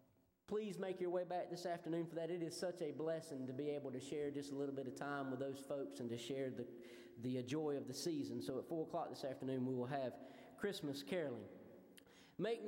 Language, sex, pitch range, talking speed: English, male, 145-185 Hz, 230 wpm